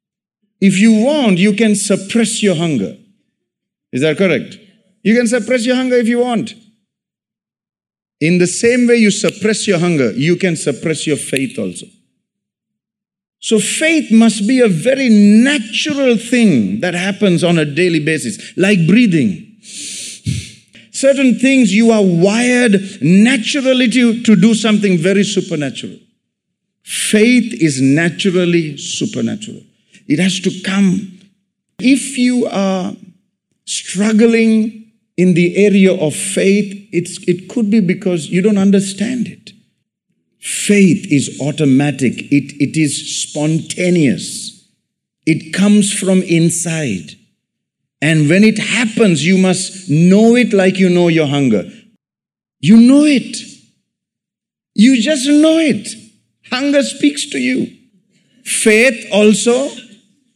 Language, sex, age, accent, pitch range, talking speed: English, male, 50-69, Indian, 180-230 Hz, 120 wpm